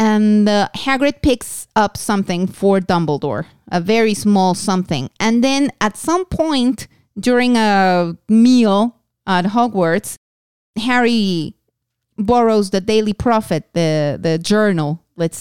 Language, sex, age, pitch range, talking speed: English, female, 30-49, 175-230 Hz, 120 wpm